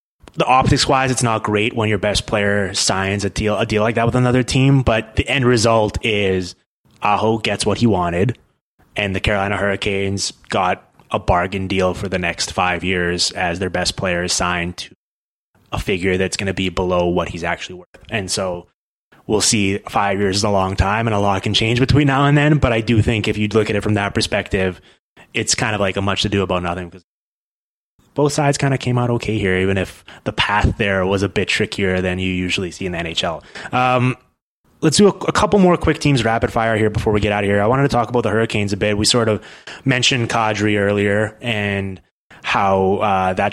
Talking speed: 225 wpm